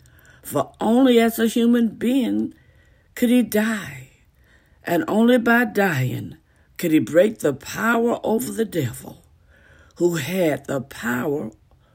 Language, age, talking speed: English, 60-79, 125 wpm